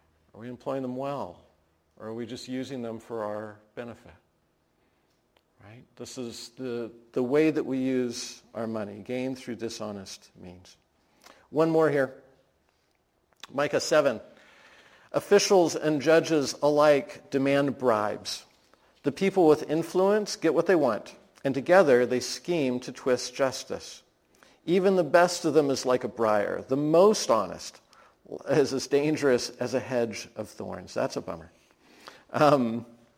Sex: male